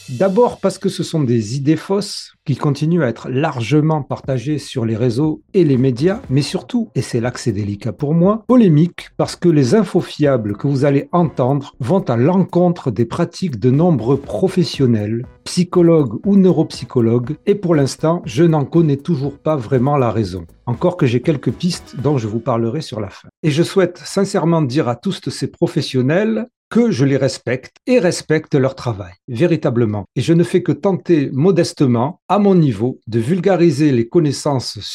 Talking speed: 180 wpm